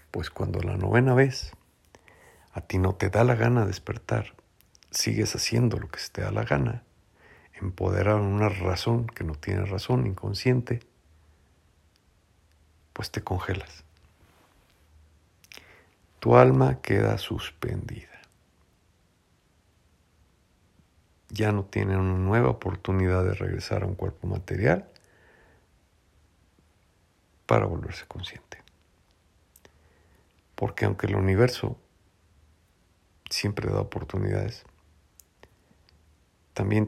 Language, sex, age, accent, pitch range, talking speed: Spanish, male, 50-69, Mexican, 85-105 Hz, 100 wpm